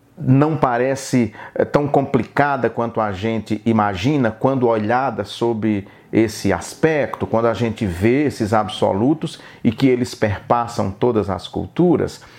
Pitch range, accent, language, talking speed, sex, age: 115-160 Hz, Brazilian, Portuguese, 125 wpm, male, 40-59